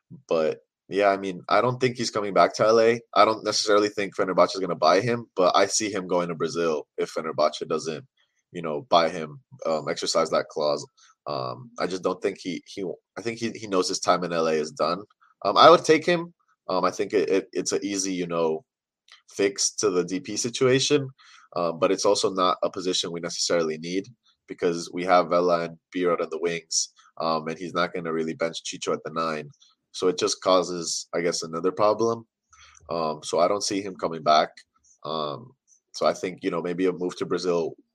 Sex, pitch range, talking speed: male, 85-115 Hz, 215 wpm